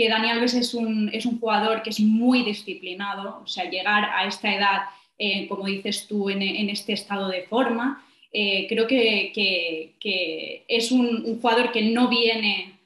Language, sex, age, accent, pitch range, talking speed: Spanish, female, 20-39, Spanish, 200-230 Hz, 180 wpm